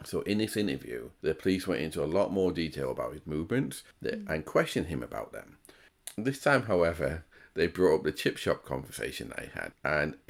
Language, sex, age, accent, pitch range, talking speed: English, male, 40-59, British, 75-100 Hz, 200 wpm